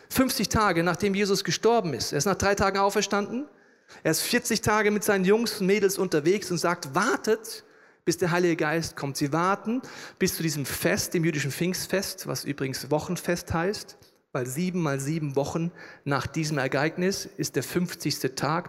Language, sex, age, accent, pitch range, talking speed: German, male, 40-59, German, 155-205 Hz, 175 wpm